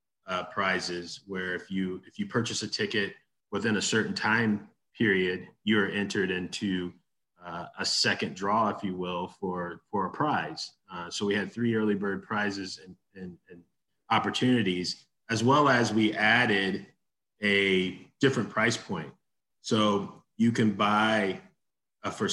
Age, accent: 30-49, American